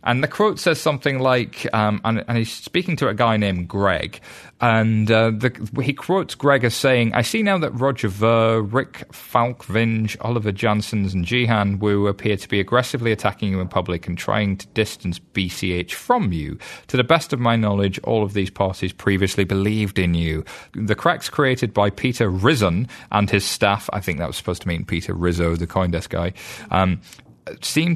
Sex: male